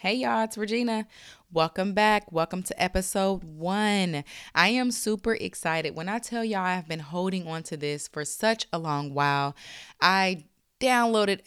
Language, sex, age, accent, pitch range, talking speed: English, female, 20-39, American, 150-200 Hz, 160 wpm